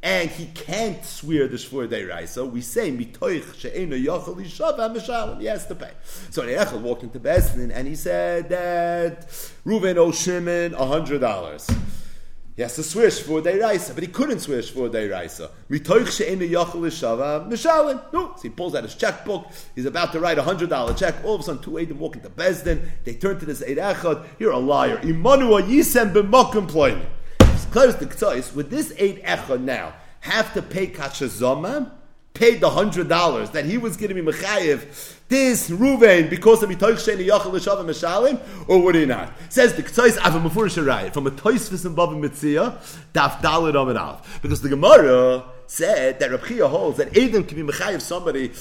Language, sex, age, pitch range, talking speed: English, male, 40-59, 150-220 Hz, 170 wpm